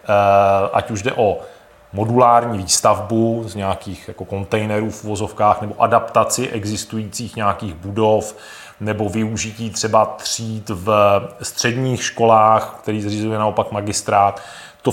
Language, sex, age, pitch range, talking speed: Czech, male, 30-49, 100-115 Hz, 115 wpm